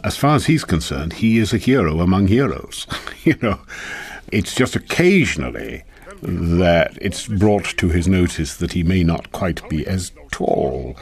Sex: male